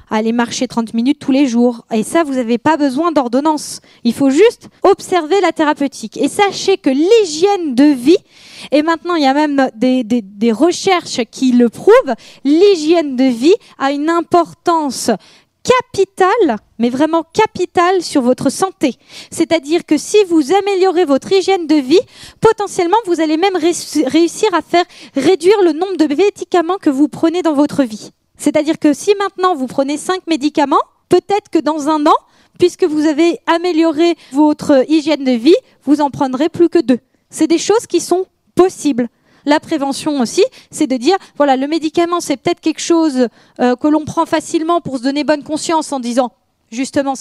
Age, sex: 20-39, female